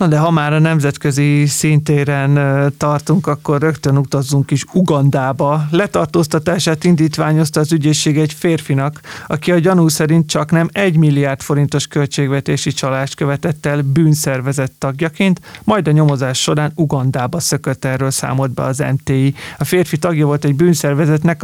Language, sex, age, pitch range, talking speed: Hungarian, male, 30-49, 135-155 Hz, 145 wpm